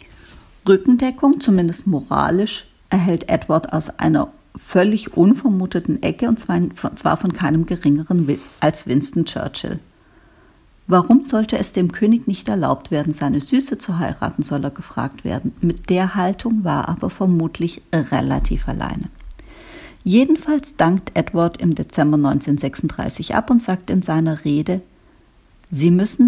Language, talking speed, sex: German, 130 wpm, female